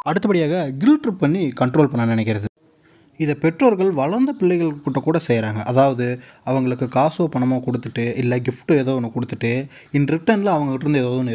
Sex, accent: male, native